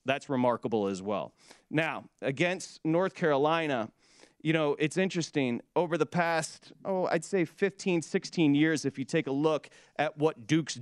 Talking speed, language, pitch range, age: 155 wpm, English, 135-170 Hz, 30-49